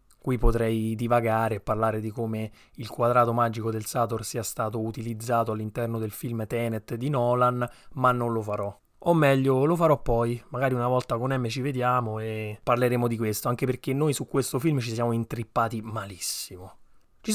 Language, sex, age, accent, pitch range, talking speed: Italian, male, 20-39, native, 115-140 Hz, 180 wpm